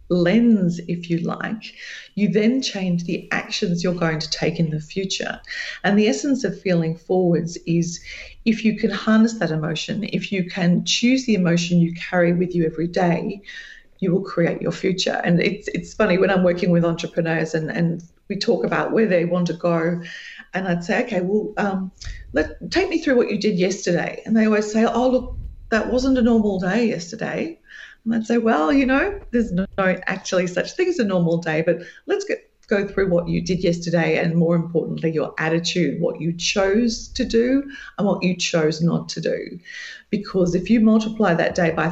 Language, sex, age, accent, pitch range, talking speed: English, female, 40-59, Australian, 170-220 Hz, 200 wpm